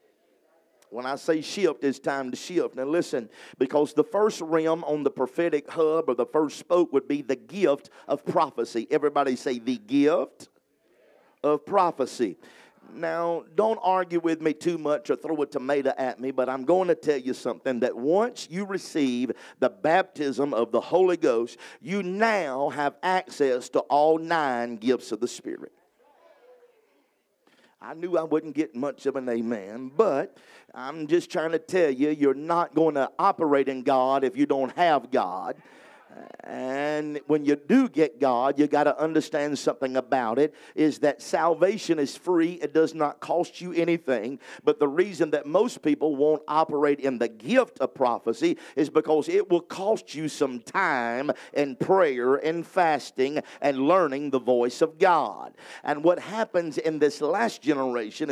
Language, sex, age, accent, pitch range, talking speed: English, male, 50-69, American, 140-170 Hz, 170 wpm